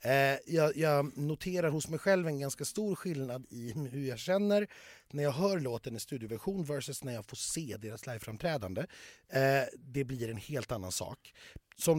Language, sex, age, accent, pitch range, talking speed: Swedish, male, 30-49, native, 125-170 Hz, 180 wpm